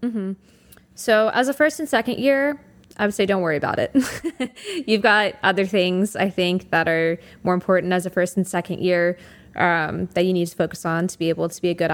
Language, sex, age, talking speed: English, female, 20-39, 230 wpm